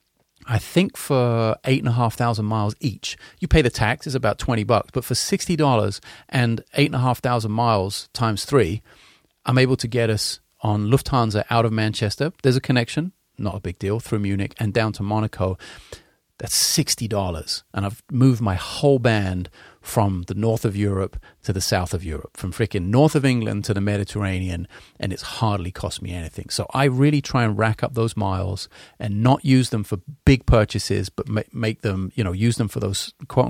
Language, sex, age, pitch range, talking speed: English, male, 30-49, 100-125 Hz, 195 wpm